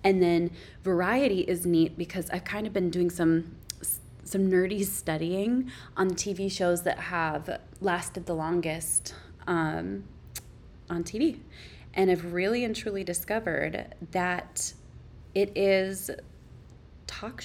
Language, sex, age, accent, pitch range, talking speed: English, female, 20-39, American, 170-195 Hz, 125 wpm